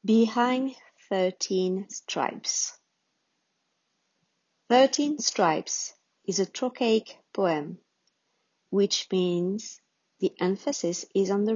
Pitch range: 180-225 Hz